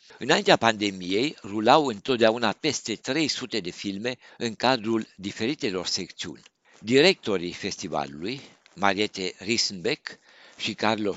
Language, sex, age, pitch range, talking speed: Romanian, male, 60-79, 95-120 Hz, 95 wpm